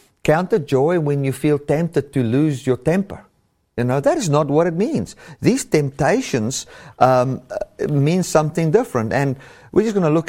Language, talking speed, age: English, 175 wpm, 50-69